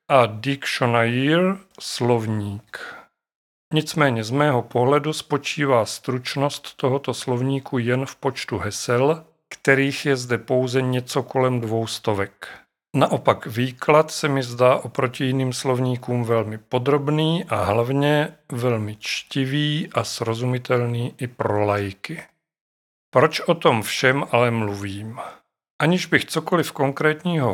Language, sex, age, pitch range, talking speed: Czech, male, 40-59, 115-140 Hz, 115 wpm